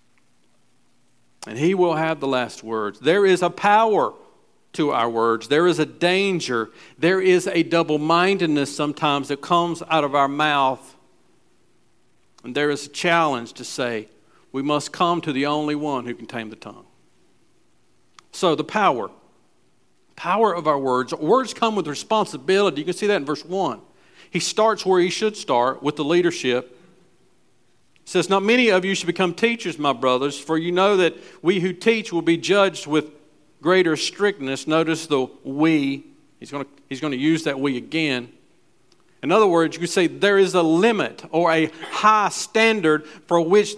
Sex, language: male, English